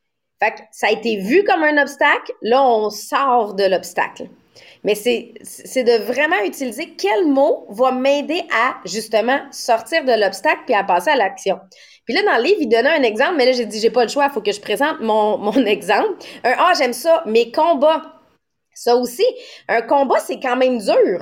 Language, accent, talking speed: English, Canadian, 210 wpm